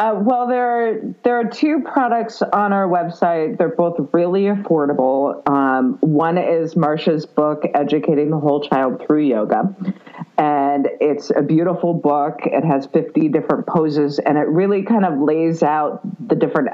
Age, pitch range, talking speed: 40-59, 150-220 Hz, 160 wpm